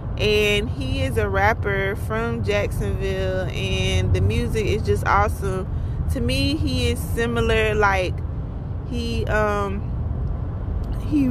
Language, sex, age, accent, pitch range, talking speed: English, female, 20-39, American, 95-110 Hz, 115 wpm